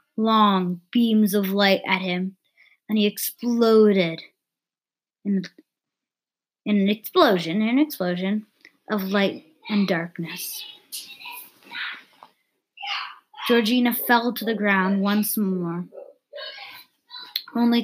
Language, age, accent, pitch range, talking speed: English, 20-39, American, 190-235 Hz, 90 wpm